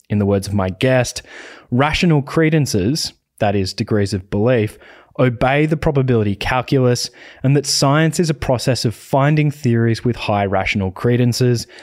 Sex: male